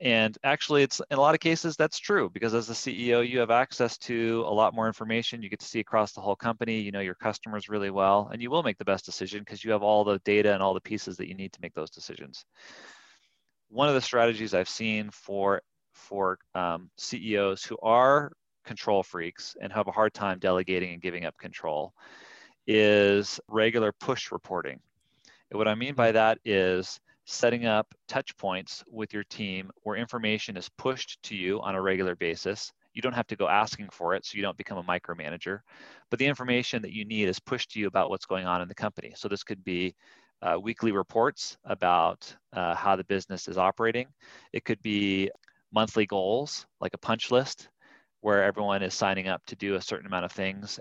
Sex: male